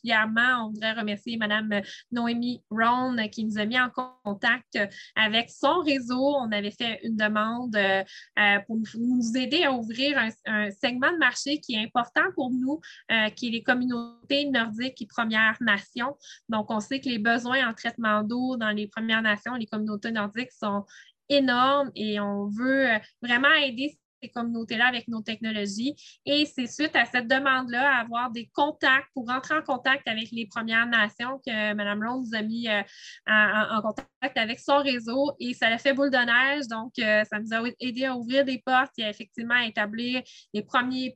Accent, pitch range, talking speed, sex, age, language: Canadian, 215-255 Hz, 180 wpm, female, 20-39, English